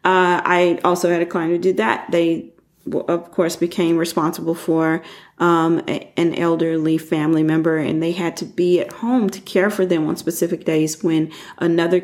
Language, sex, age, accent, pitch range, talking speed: English, female, 40-59, American, 160-180 Hz, 185 wpm